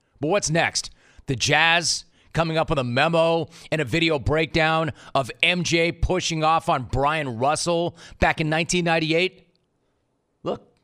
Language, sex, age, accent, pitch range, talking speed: English, male, 30-49, American, 130-165 Hz, 140 wpm